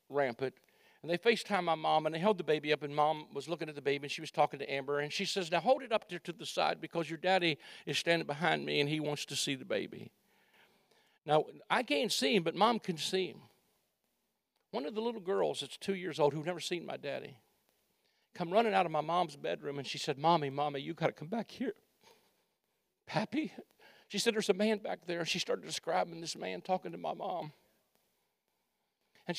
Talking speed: 225 wpm